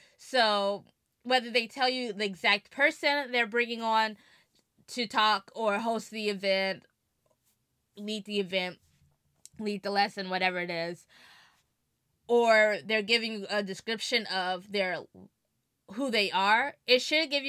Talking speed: 135 wpm